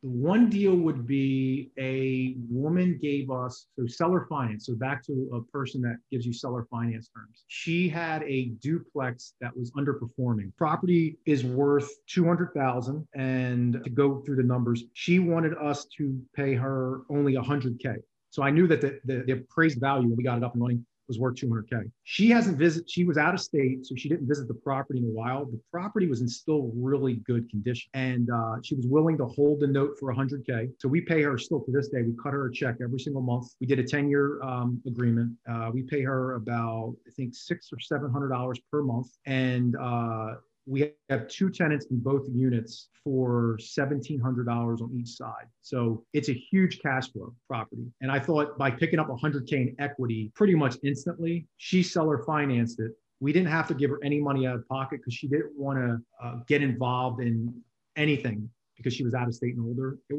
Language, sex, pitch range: English, male, 120-145 Hz